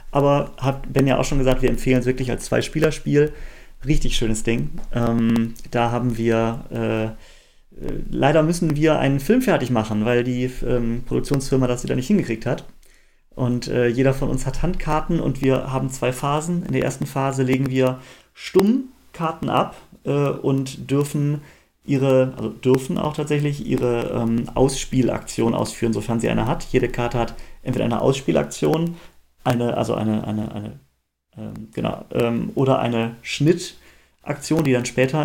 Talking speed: 155 wpm